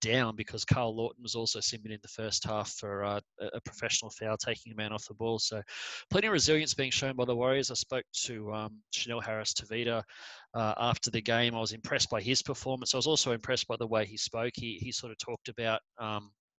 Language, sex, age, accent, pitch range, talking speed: English, male, 20-39, Australian, 110-125 Hz, 230 wpm